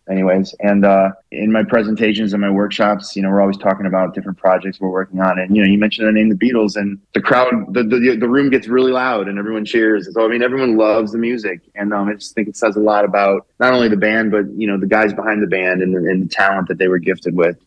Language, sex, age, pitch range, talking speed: English, male, 20-39, 95-115 Hz, 270 wpm